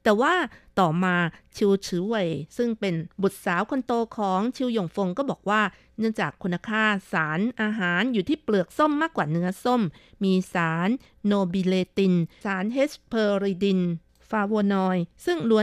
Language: Thai